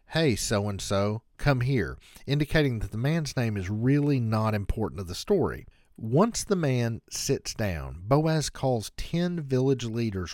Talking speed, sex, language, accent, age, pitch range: 150 wpm, male, English, American, 50-69, 95-135 Hz